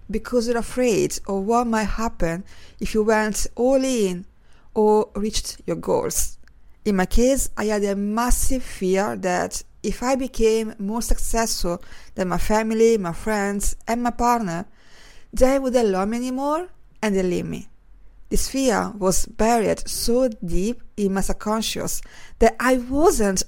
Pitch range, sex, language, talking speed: 195-245 Hz, female, English, 150 wpm